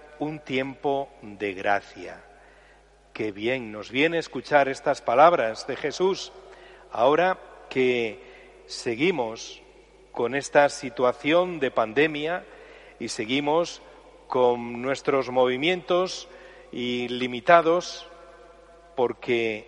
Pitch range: 125-185 Hz